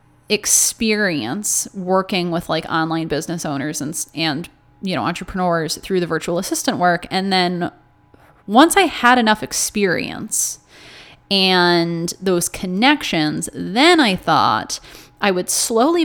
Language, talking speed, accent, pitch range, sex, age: English, 125 wpm, American, 170-210 Hz, female, 20-39